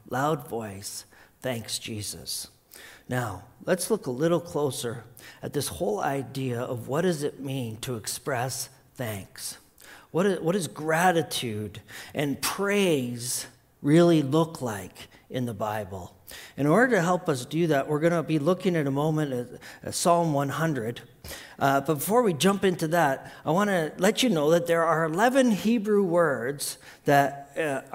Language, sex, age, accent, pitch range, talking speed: English, male, 50-69, American, 130-180 Hz, 160 wpm